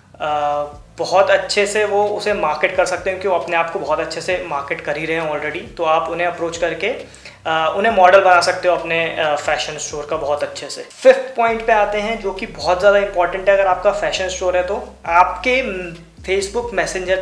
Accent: native